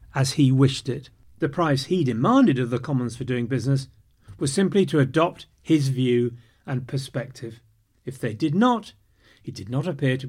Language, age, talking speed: English, 40-59, 180 wpm